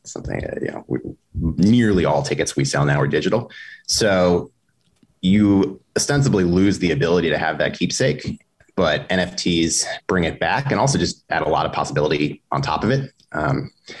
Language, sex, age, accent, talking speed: English, male, 30-49, American, 165 wpm